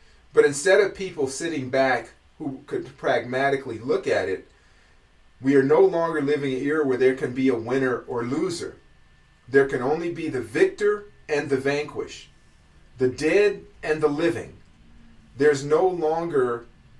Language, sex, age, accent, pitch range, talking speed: English, male, 40-59, American, 135-185 Hz, 155 wpm